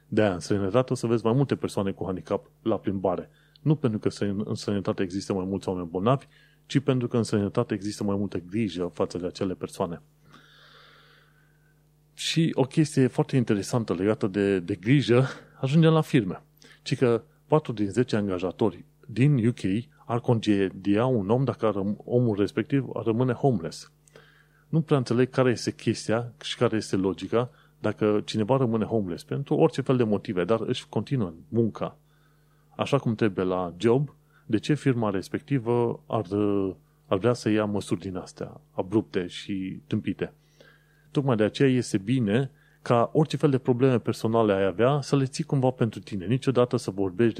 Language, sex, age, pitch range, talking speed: Romanian, male, 30-49, 105-145 Hz, 170 wpm